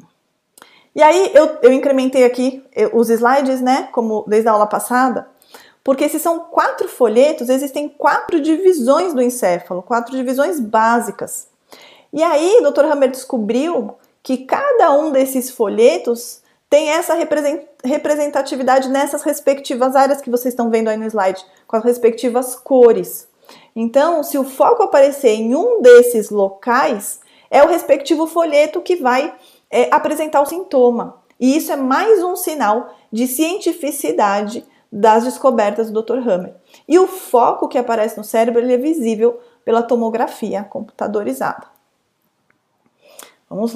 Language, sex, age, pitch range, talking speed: Portuguese, female, 30-49, 235-300 Hz, 140 wpm